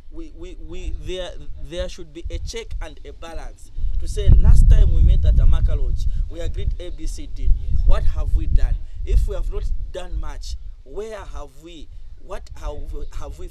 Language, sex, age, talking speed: English, male, 30-49, 180 wpm